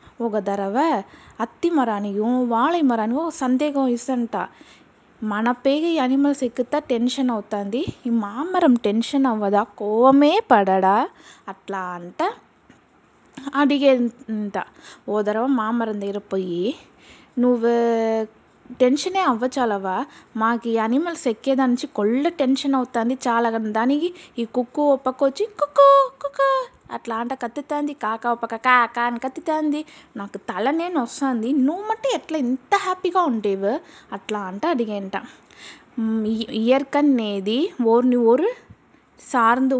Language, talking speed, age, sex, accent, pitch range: Telugu, 100 wpm, 20-39, female, native, 220-275 Hz